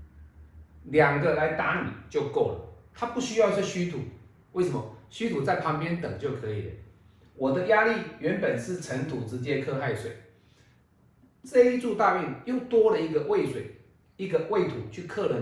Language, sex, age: Chinese, male, 30-49